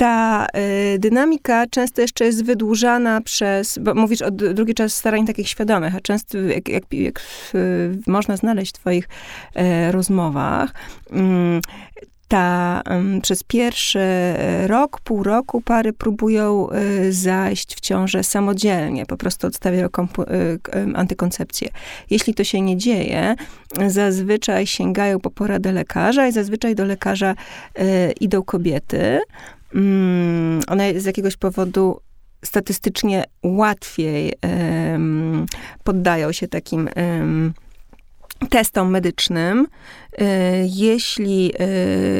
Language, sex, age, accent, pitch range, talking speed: Polish, female, 30-49, native, 185-225 Hz, 110 wpm